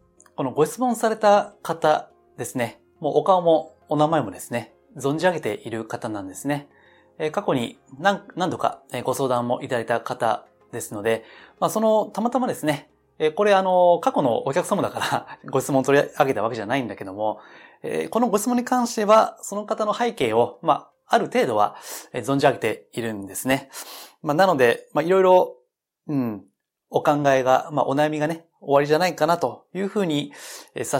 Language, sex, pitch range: Japanese, male, 135-200 Hz